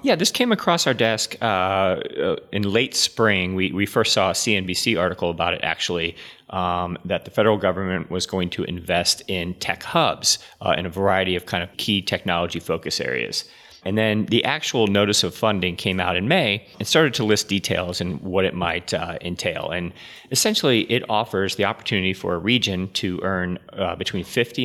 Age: 30-49